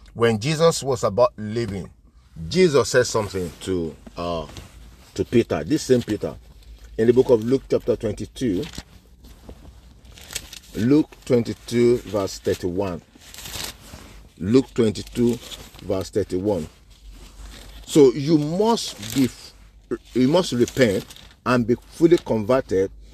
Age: 50-69